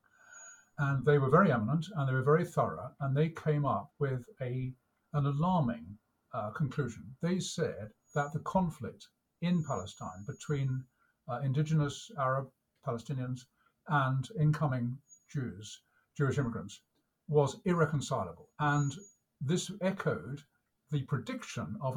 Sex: male